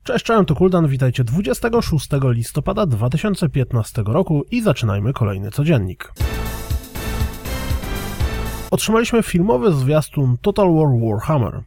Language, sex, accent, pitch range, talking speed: Polish, male, native, 110-160 Hz, 100 wpm